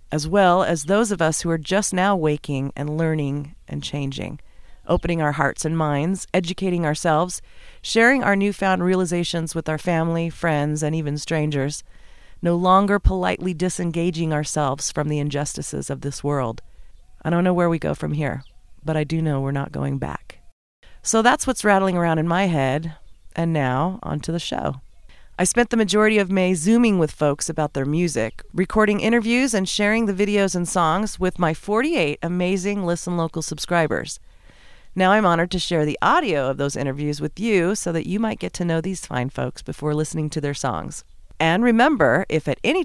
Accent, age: American, 40-59